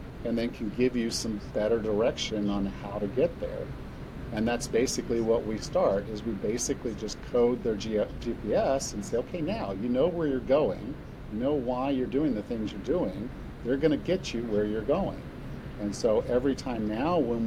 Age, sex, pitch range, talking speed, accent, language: 50-69, male, 105-130 Hz, 195 wpm, American, English